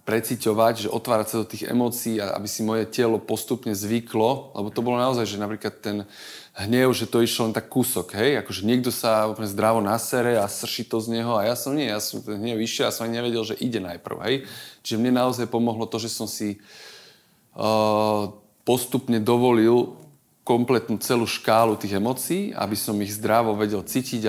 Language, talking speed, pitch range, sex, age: Slovak, 195 wpm, 105-125 Hz, male, 20-39